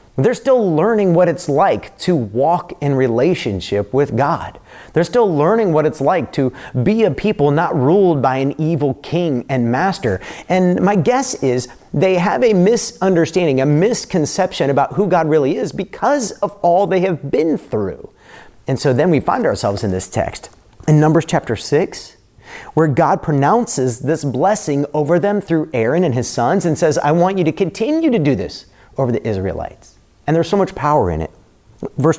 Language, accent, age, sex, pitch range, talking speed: English, American, 40-59, male, 130-190 Hz, 185 wpm